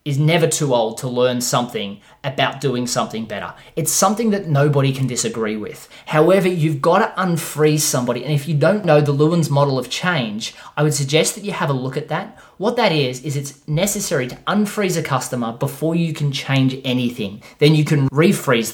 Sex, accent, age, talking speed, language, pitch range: male, Australian, 20-39, 200 wpm, English, 130-165 Hz